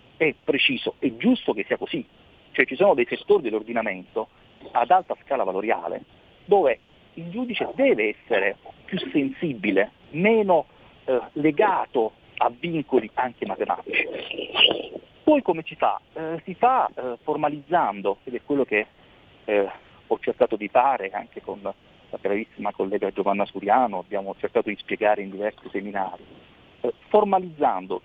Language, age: Italian, 40-59